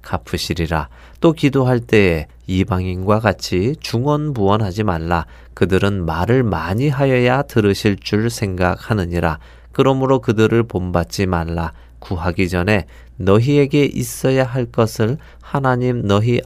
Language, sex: Korean, male